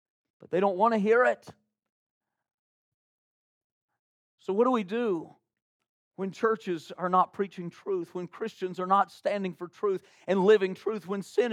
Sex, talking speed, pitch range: male, 155 wpm, 135-200 Hz